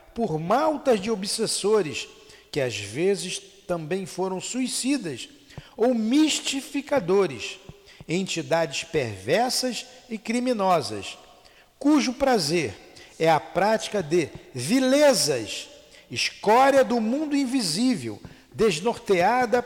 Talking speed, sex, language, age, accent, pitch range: 85 wpm, male, Portuguese, 50-69, Brazilian, 165-230 Hz